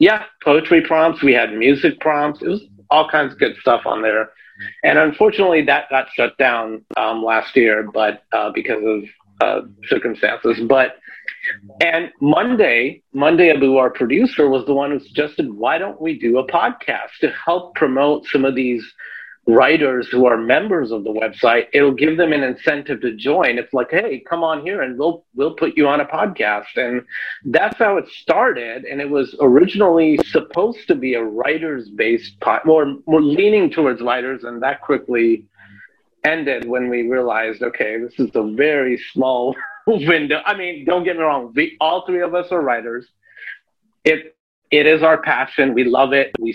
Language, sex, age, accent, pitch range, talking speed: English, male, 50-69, American, 125-160 Hz, 180 wpm